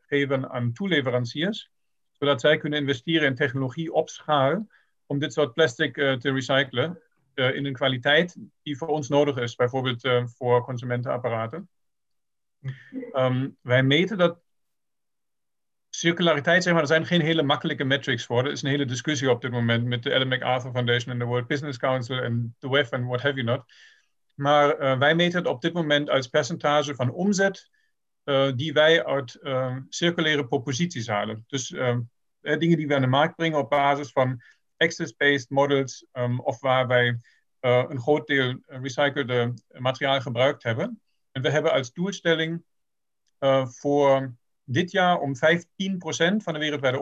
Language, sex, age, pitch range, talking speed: Dutch, male, 50-69, 130-160 Hz, 165 wpm